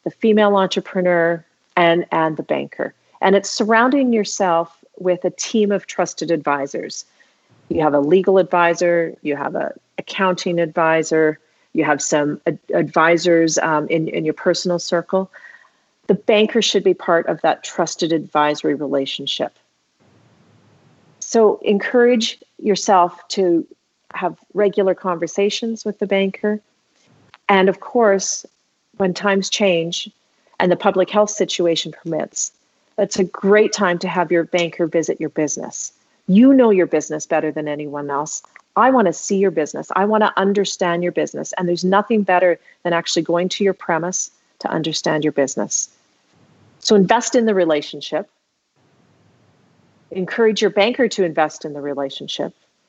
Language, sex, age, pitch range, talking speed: English, female, 40-59, 160-200 Hz, 145 wpm